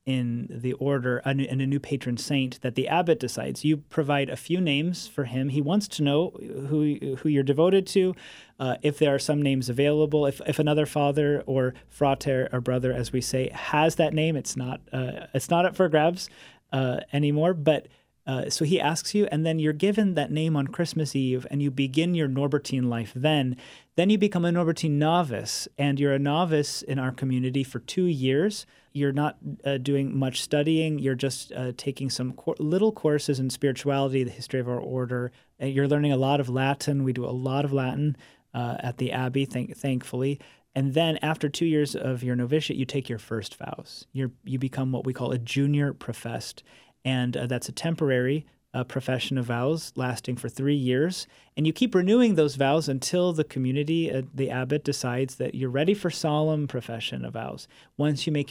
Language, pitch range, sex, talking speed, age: English, 130-155 Hz, male, 195 wpm, 30-49